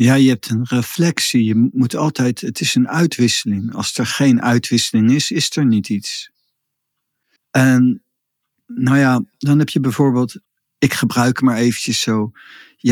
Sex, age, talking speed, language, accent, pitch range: male, 50-69, 160 wpm, Dutch, Dutch, 125-150 Hz